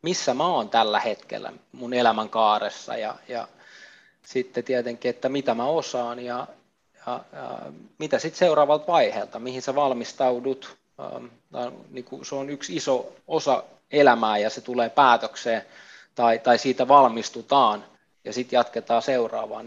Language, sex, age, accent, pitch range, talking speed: Finnish, male, 20-39, native, 120-140 Hz, 135 wpm